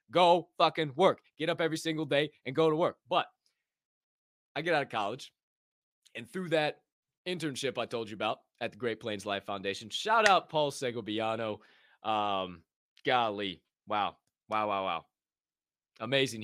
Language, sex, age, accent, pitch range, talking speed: English, male, 20-39, American, 105-135 Hz, 155 wpm